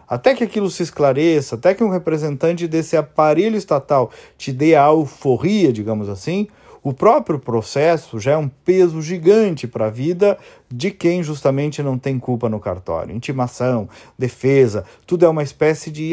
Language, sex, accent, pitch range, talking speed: Portuguese, male, Brazilian, 120-175 Hz, 165 wpm